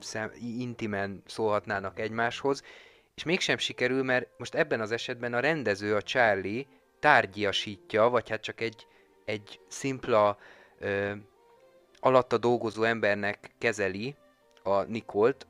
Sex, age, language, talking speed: male, 30-49, Hungarian, 110 wpm